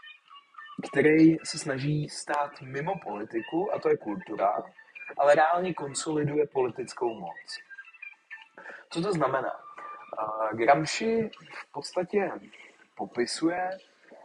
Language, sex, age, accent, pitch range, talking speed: Czech, male, 30-49, native, 120-185 Hz, 95 wpm